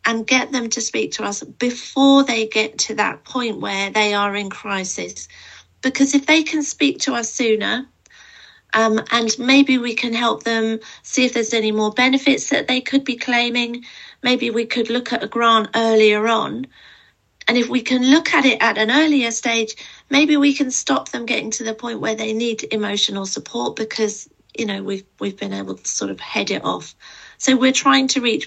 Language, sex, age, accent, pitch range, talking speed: English, female, 40-59, British, 215-265 Hz, 200 wpm